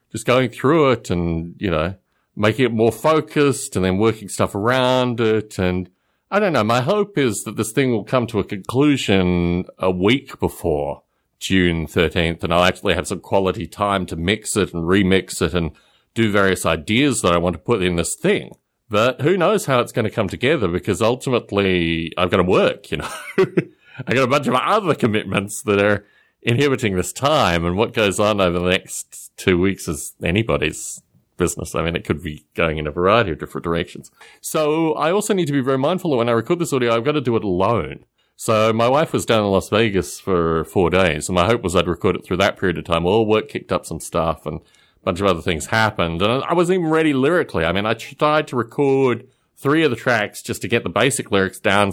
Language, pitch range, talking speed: English, 90-125 Hz, 225 wpm